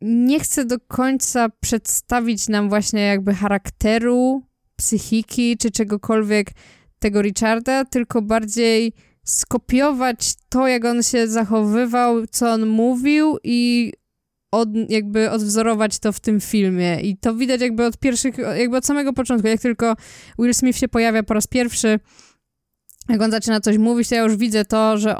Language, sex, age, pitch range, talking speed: Polish, female, 20-39, 205-235 Hz, 150 wpm